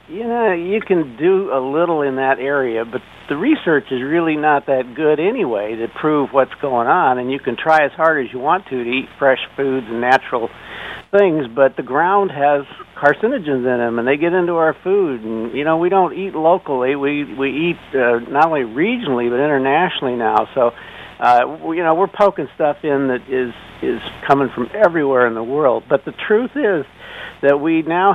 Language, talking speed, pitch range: English, 205 wpm, 130-170 Hz